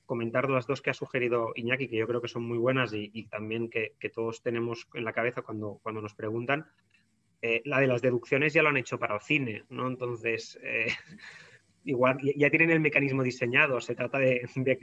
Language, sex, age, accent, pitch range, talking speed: Spanish, male, 20-39, Spanish, 115-135 Hz, 215 wpm